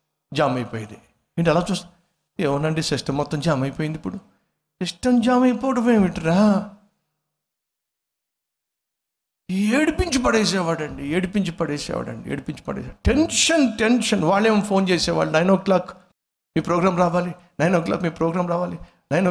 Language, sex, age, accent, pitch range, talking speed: Telugu, male, 60-79, native, 140-190 Hz, 120 wpm